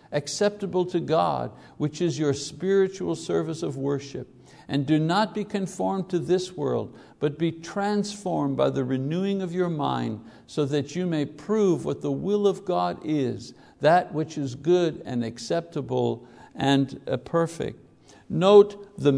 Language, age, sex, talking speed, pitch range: English, 60-79, male, 150 wpm, 140-185 Hz